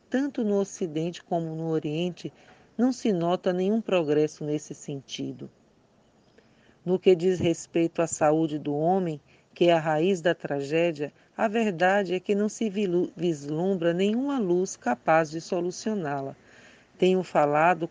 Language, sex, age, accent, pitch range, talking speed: Portuguese, female, 40-59, Brazilian, 165-210 Hz, 135 wpm